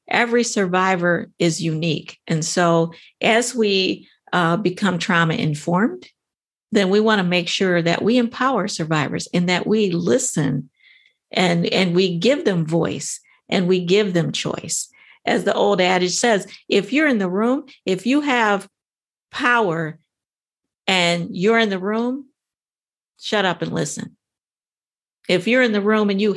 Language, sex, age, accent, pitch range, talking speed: English, female, 50-69, American, 175-225 Hz, 150 wpm